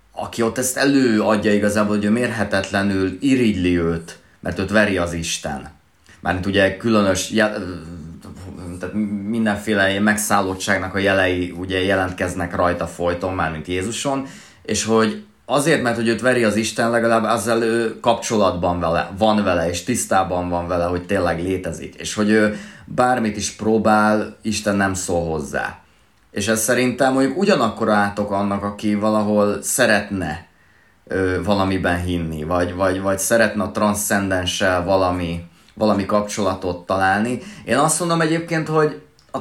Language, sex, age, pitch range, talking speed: Hungarian, male, 20-39, 90-115 Hz, 140 wpm